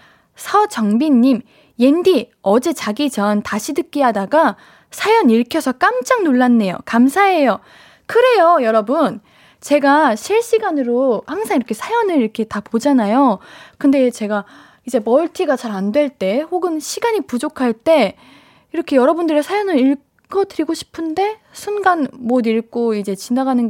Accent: native